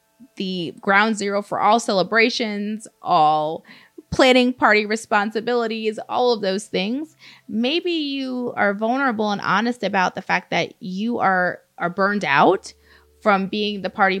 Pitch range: 155-225 Hz